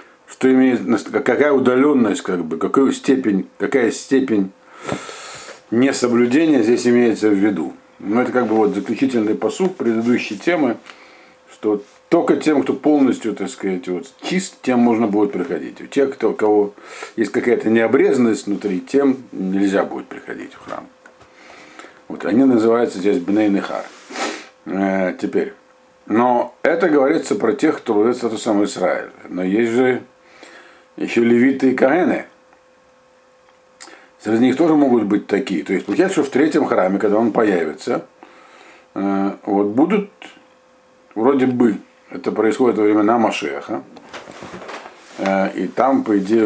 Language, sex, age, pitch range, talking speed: Russian, male, 50-69, 100-130 Hz, 140 wpm